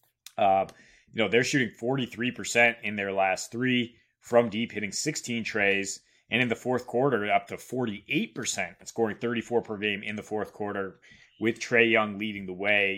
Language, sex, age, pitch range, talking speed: English, male, 20-39, 105-120 Hz, 170 wpm